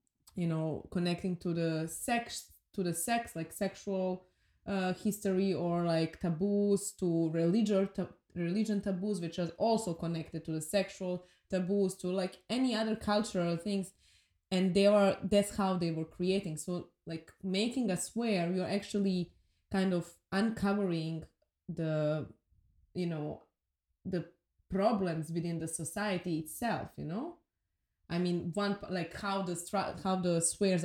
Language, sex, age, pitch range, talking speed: English, female, 20-39, 165-195 Hz, 140 wpm